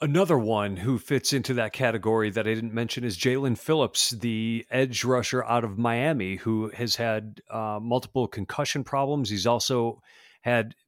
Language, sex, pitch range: English, male, 105-135 Hz